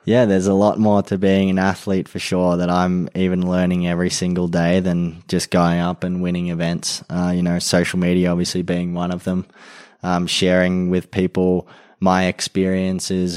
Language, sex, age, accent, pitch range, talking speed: English, male, 20-39, Australian, 85-90 Hz, 185 wpm